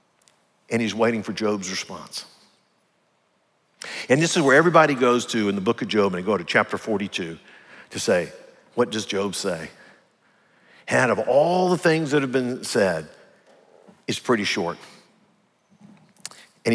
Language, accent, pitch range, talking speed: English, American, 105-145 Hz, 160 wpm